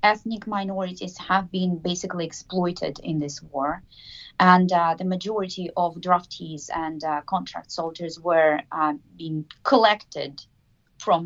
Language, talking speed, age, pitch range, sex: Finnish, 130 wpm, 30-49, 160-195 Hz, female